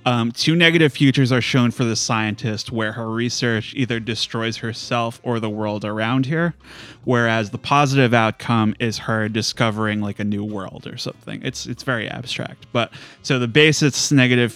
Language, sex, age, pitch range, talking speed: English, male, 30-49, 115-135 Hz, 175 wpm